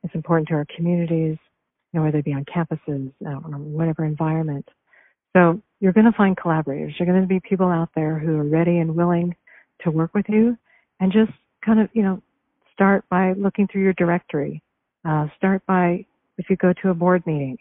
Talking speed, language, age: 200 wpm, English, 50-69